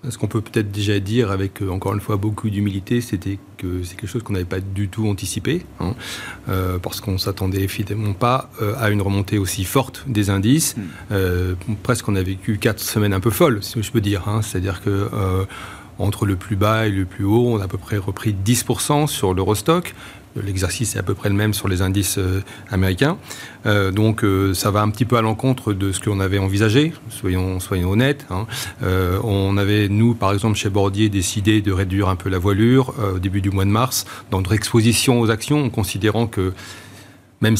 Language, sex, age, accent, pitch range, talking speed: French, male, 40-59, French, 95-115 Hz, 215 wpm